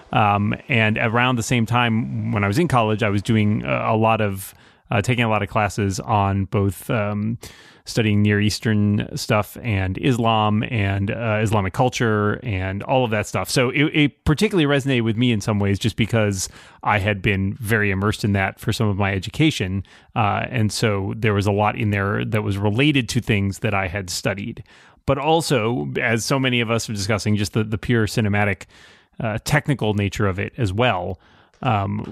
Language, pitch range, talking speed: English, 105-125 Hz, 200 wpm